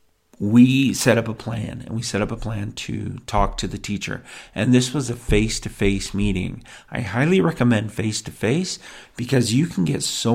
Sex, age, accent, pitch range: male, 40-59, American, 100-120 Hz